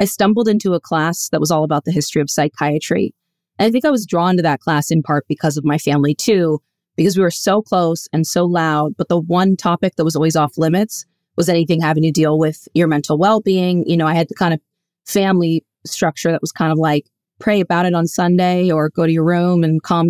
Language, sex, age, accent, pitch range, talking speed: English, female, 20-39, American, 160-190 Hz, 240 wpm